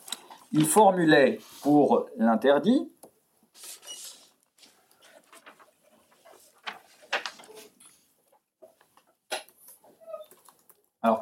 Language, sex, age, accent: French, male, 50-69, French